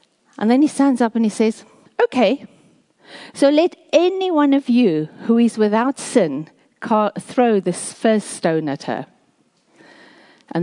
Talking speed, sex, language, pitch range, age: 145 wpm, female, English, 160-230 Hz, 50-69